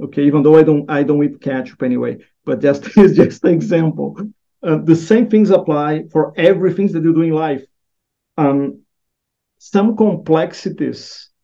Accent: Brazilian